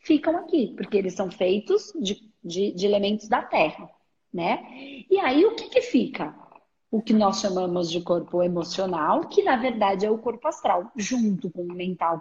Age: 40-59